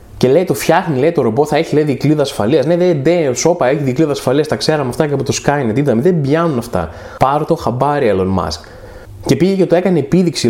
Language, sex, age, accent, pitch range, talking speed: Greek, male, 20-39, native, 125-180 Hz, 235 wpm